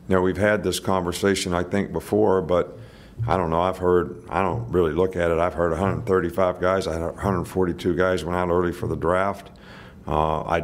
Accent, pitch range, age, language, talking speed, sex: American, 90-110 Hz, 50-69, English, 195 wpm, male